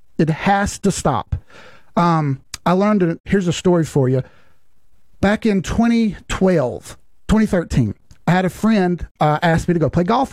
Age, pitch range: 40-59, 130-185 Hz